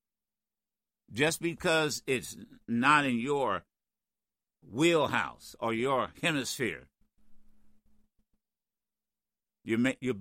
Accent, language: American, English